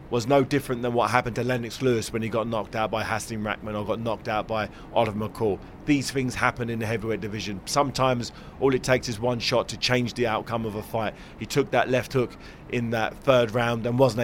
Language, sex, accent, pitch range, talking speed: English, male, British, 115-140 Hz, 235 wpm